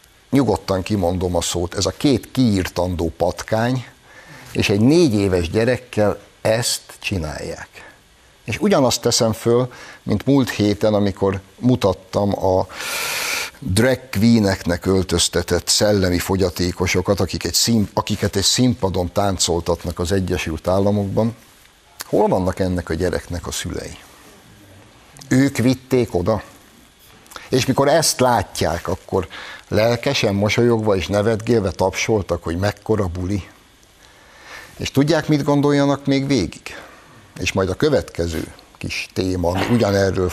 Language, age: Hungarian, 60-79